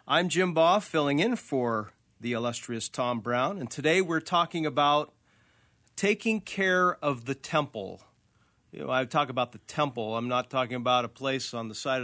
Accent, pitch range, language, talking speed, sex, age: American, 125-155 Hz, English, 180 wpm, male, 40-59